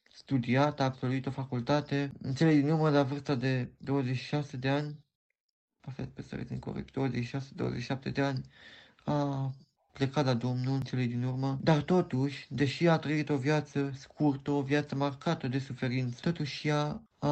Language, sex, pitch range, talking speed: Romanian, male, 130-150 Hz, 165 wpm